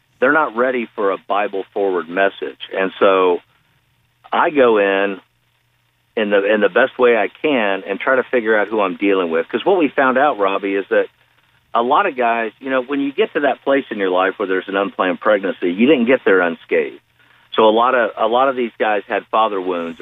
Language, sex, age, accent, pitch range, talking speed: English, male, 50-69, American, 100-135 Hz, 225 wpm